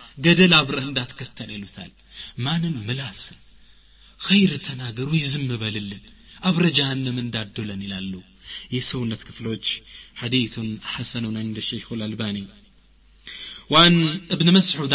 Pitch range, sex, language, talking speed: 115-170 Hz, male, Amharic, 105 wpm